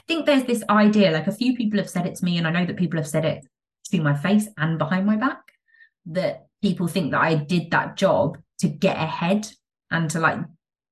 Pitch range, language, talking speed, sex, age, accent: 155-210 Hz, English, 235 wpm, female, 20-39, British